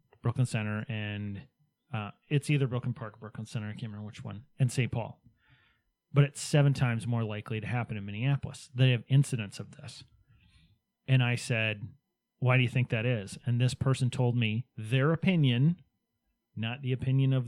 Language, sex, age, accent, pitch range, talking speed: English, male, 30-49, American, 115-135 Hz, 185 wpm